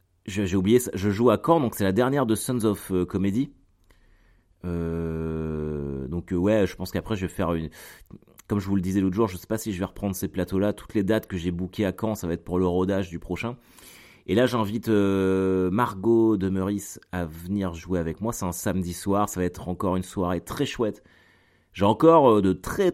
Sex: male